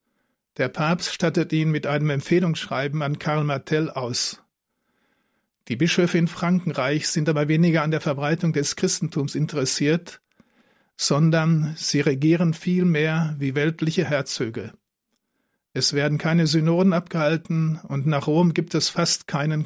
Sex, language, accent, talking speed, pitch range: male, German, German, 130 wpm, 150-170 Hz